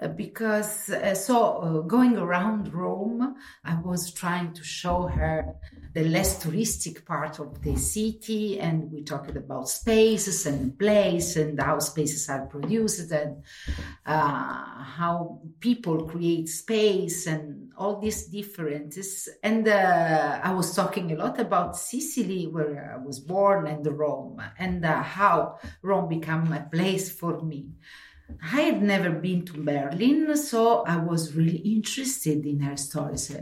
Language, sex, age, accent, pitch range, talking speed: German, female, 50-69, Italian, 150-205 Hz, 145 wpm